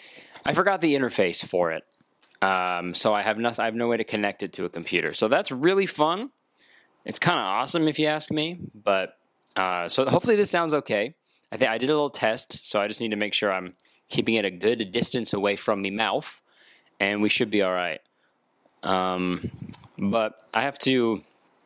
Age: 20-39